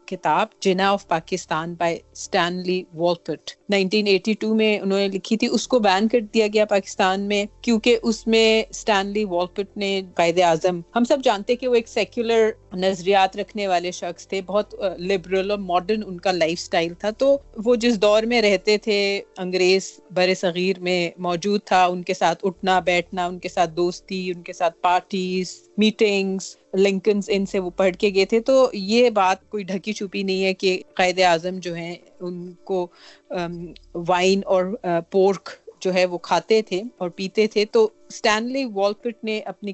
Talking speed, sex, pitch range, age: 130 wpm, female, 180-215 Hz, 40-59